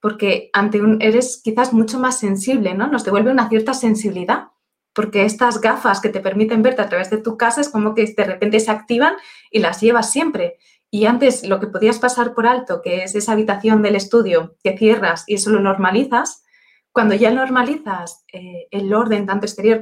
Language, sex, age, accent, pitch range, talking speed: Spanish, female, 20-39, Spanish, 195-235 Hz, 195 wpm